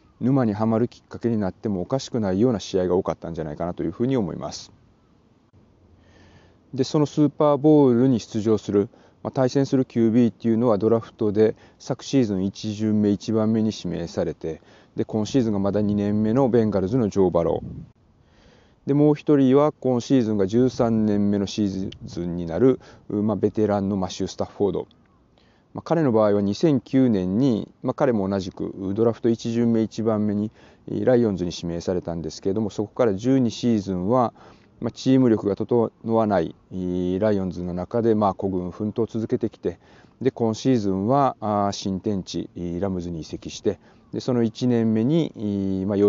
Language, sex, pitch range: Japanese, male, 95-120 Hz